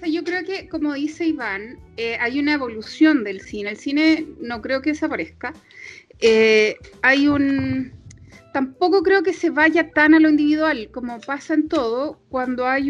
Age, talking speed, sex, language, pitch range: 30-49, 170 wpm, female, Spanish, 260-325 Hz